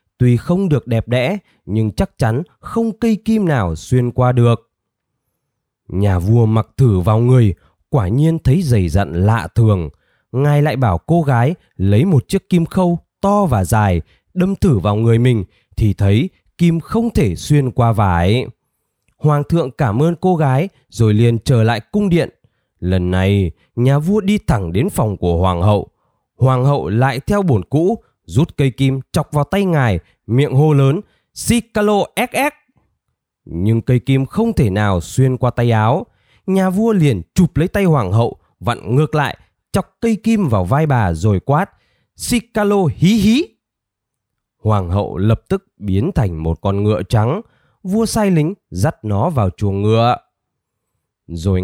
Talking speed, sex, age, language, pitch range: 170 wpm, male, 20-39, Vietnamese, 105-165 Hz